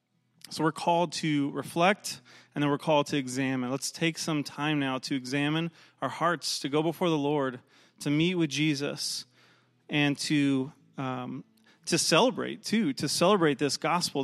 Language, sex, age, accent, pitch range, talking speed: English, male, 30-49, American, 140-160 Hz, 165 wpm